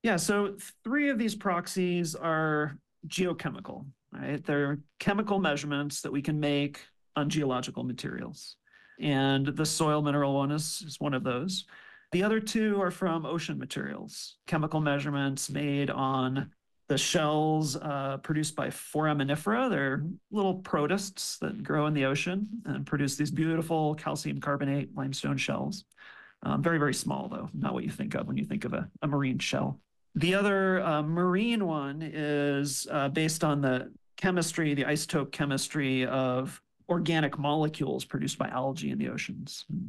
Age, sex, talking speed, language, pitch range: 40-59, male, 155 wpm, English, 140-180 Hz